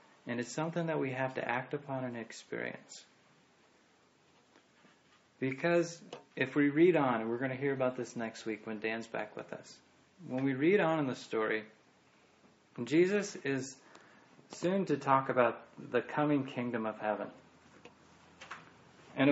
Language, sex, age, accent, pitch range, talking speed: English, male, 30-49, American, 110-135 Hz, 150 wpm